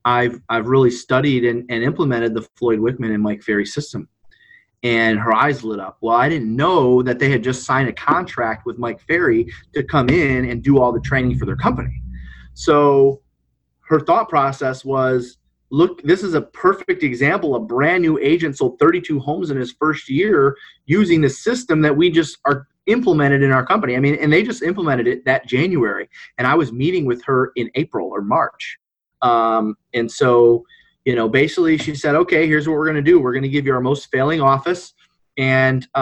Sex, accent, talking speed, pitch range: male, American, 200 wpm, 120-155 Hz